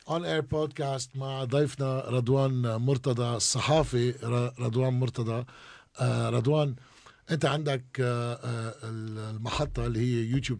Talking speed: 95 wpm